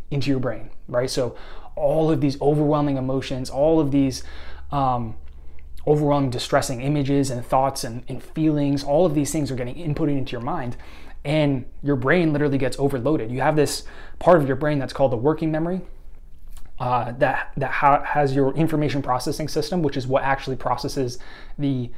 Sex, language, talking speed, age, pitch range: male, English, 170 wpm, 20-39, 130-155 Hz